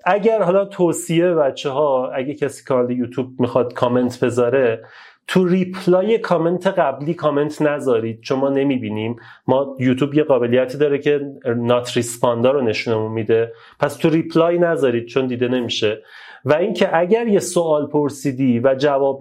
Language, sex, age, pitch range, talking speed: Persian, male, 30-49, 130-175 Hz, 145 wpm